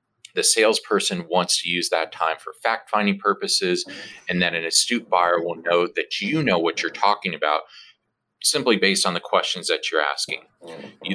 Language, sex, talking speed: English, male, 180 wpm